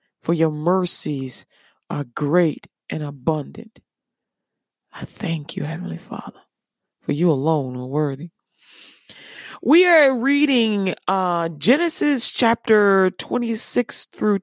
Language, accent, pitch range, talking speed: English, American, 160-225 Hz, 105 wpm